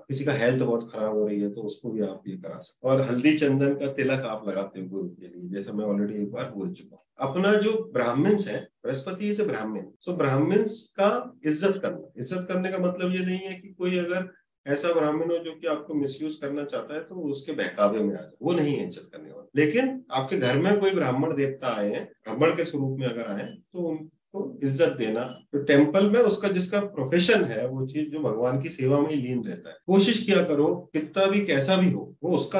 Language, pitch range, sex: Hindi, 130-190 Hz, male